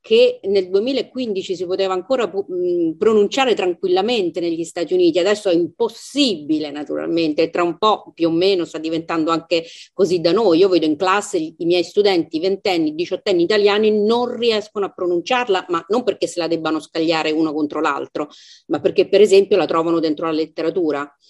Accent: native